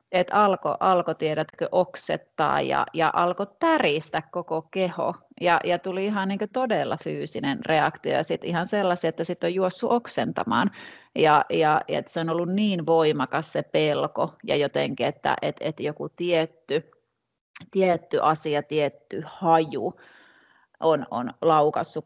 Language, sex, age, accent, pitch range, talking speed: Finnish, female, 30-49, native, 155-185 Hz, 140 wpm